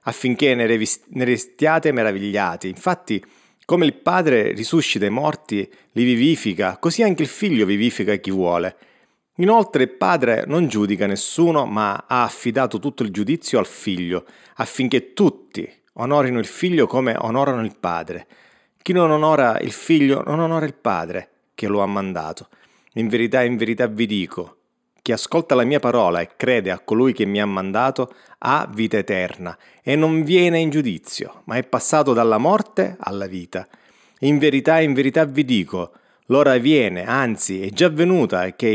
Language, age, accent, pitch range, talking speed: Italian, 30-49, native, 105-155 Hz, 160 wpm